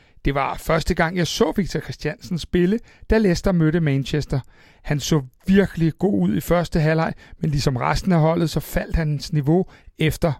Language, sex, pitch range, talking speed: Danish, male, 150-185 Hz, 180 wpm